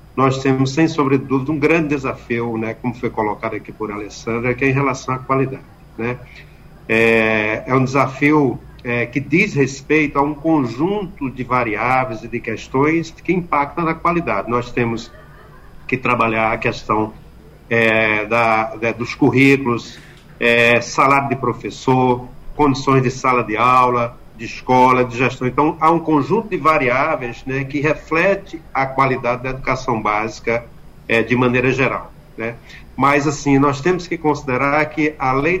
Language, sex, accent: Portuguese, male, Brazilian